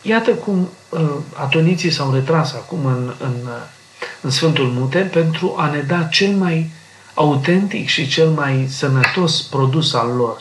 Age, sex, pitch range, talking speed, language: 40-59, male, 125-155 Hz, 145 wpm, Romanian